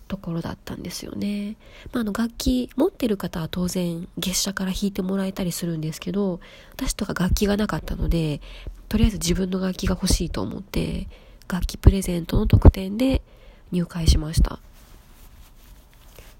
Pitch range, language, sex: 160-205 Hz, Japanese, female